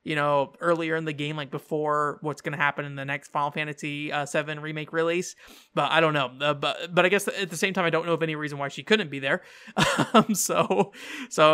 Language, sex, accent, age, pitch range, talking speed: English, male, American, 20-39, 145-175 Hz, 250 wpm